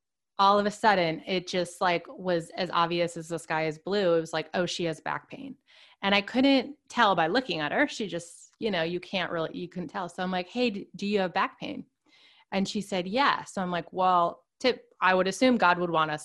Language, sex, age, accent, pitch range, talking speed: English, female, 20-39, American, 170-205 Hz, 245 wpm